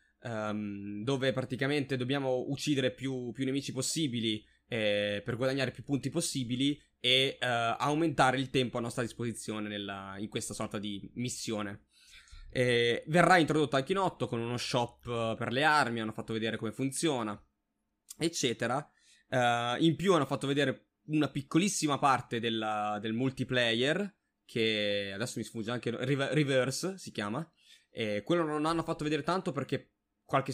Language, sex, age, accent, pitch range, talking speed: Italian, male, 20-39, native, 110-145 Hz, 145 wpm